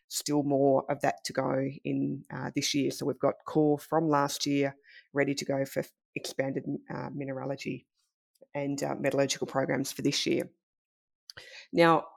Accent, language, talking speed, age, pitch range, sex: Australian, English, 160 wpm, 30-49, 145-160 Hz, female